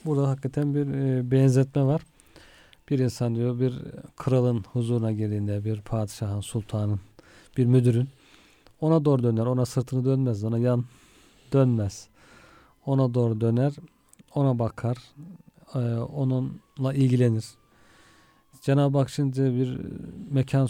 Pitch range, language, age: 115-140 Hz, Turkish, 40-59